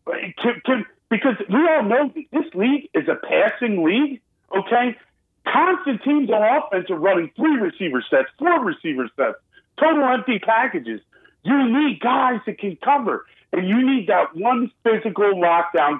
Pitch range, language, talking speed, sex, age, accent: 190-245 Hz, English, 160 wpm, male, 40-59, American